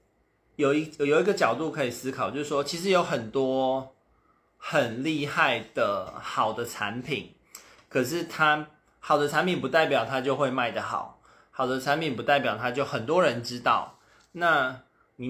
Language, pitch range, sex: Chinese, 120-145 Hz, male